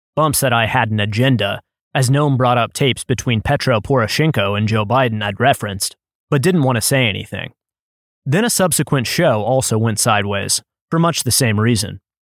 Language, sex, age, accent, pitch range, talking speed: English, male, 20-39, American, 115-165 Hz, 180 wpm